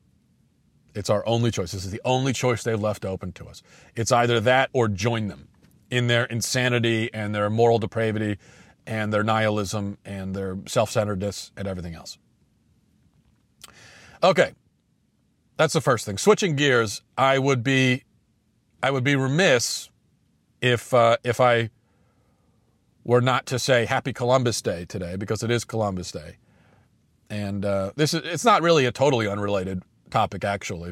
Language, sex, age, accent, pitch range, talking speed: English, male, 40-59, American, 105-125 Hz, 155 wpm